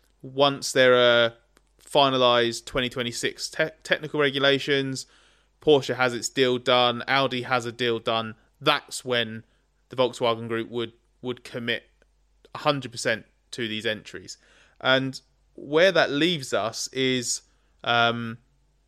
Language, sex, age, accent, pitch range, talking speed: Swedish, male, 20-39, British, 115-140 Hz, 120 wpm